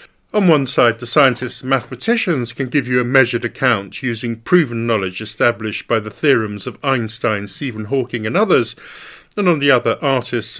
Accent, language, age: British, English, 50-69